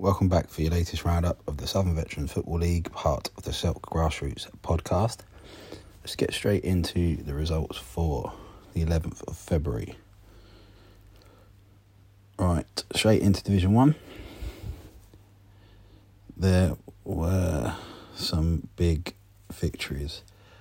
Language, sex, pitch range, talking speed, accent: English, male, 85-100 Hz, 115 wpm, British